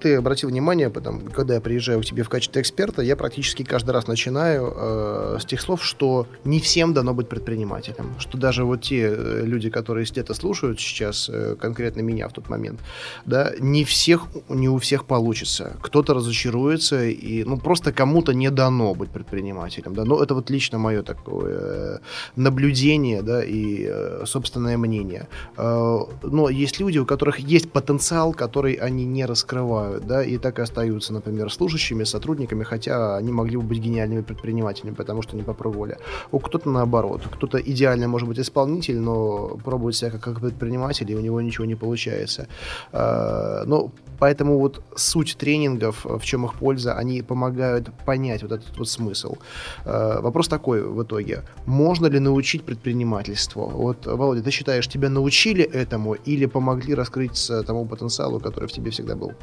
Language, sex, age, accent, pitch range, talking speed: Russian, male, 20-39, native, 115-135 Hz, 165 wpm